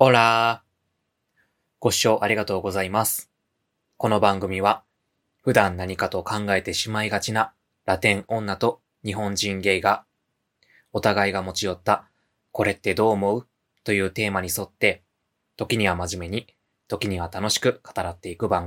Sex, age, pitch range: male, 20-39, 90-105 Hz